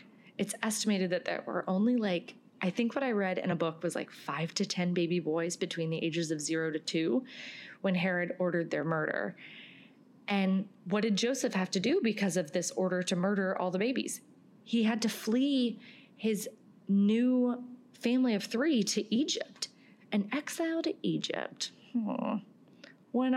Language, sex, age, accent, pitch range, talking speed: English, female, 20-39, American, 185-240 Hz, 170 wpm